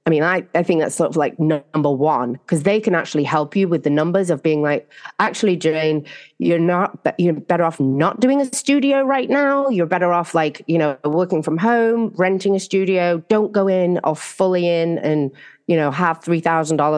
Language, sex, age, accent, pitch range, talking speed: English, female, 30-49, British, 140-180 Hz, 210 wpm